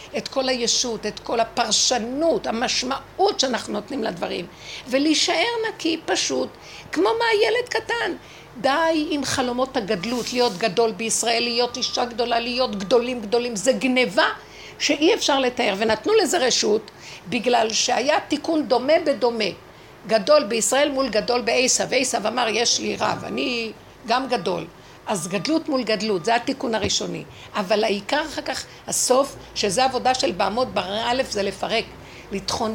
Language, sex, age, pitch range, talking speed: Hebrew, female, 60-79, 210-265 Hz, 140 wpm